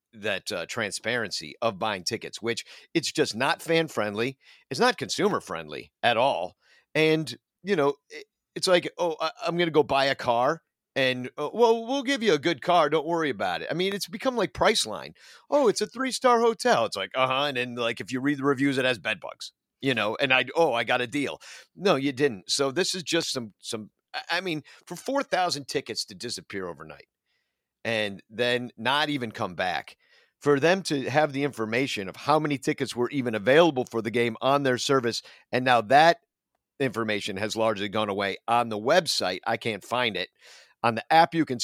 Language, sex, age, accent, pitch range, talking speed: English, male, 50-69, American, 110-165 Hz, 210 wpm